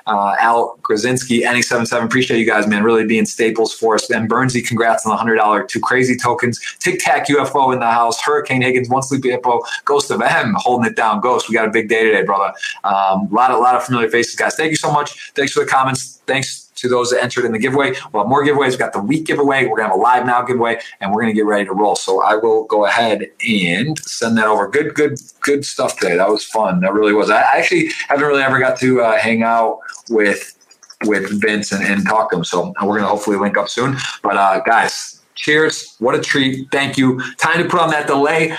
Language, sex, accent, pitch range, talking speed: English, male, American, 105-140 Hz, 250 wpm